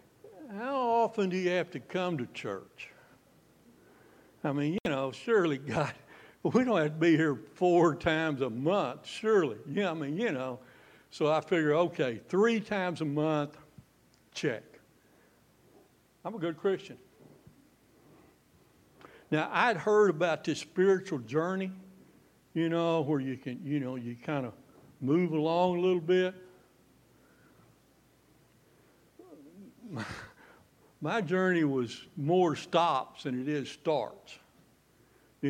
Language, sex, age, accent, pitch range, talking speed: English, male, 60-79, American, 150-185 Hz, 130 wpm